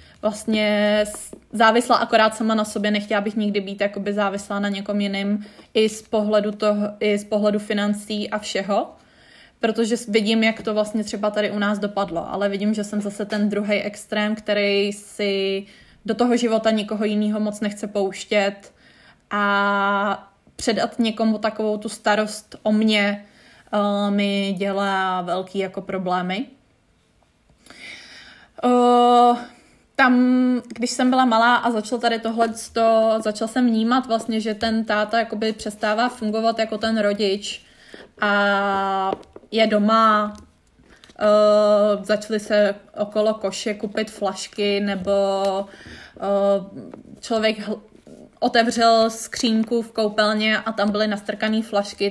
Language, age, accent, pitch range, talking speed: Czech, 20-39, native, 205-225 Hz, 130 wpm